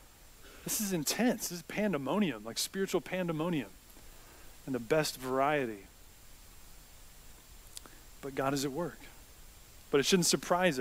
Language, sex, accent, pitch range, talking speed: English, male, American, 130-170 Hz, 120 wpm